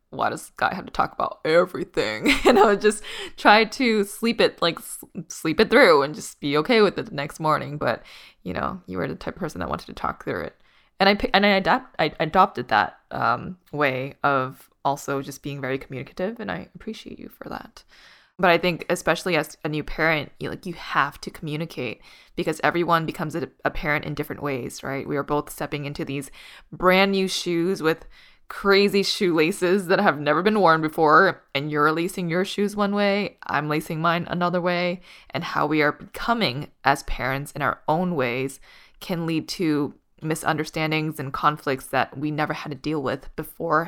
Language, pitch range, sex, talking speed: English, 150-190 Hz, female, 195 wpm